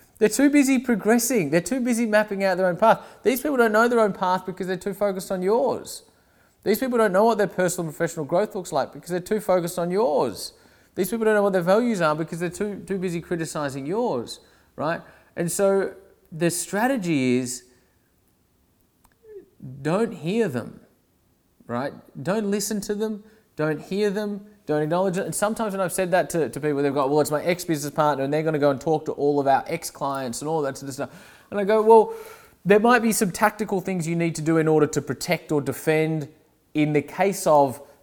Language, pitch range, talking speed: English, 155-215 Hz, 215 wpm